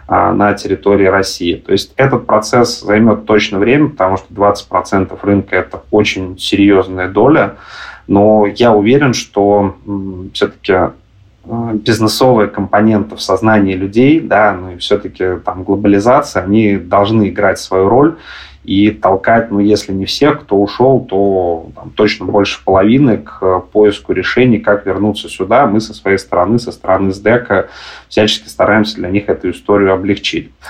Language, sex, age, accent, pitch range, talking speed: Russian, male, 20-39, native, 95-110 Hz, 140 wpm